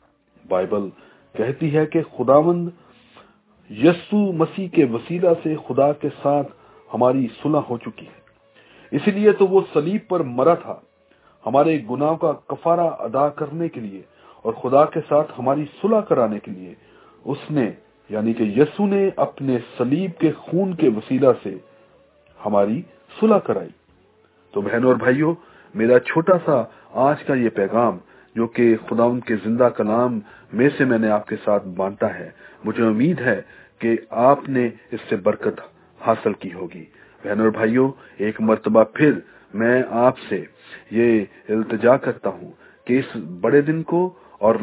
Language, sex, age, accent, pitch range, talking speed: English, male, 40-59, Indian, 115-160 Hz, 155 wpm